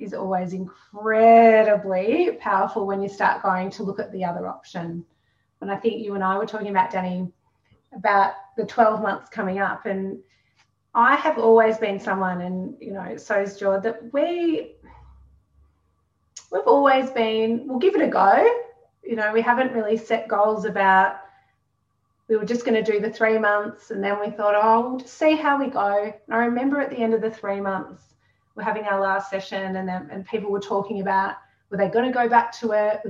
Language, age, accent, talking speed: English, 30-49, Australian, 200 wpm